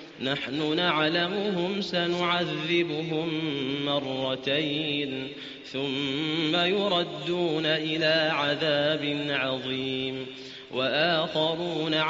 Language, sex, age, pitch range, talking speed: Arabic, male, 30-49, 140-175 Hz, 50 wpm